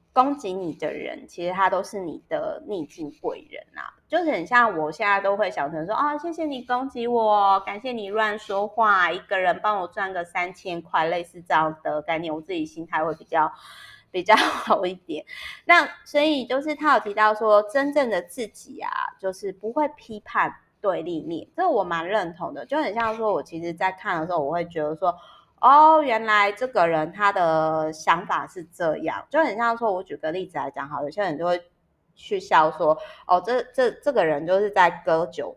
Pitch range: 165-250 Hz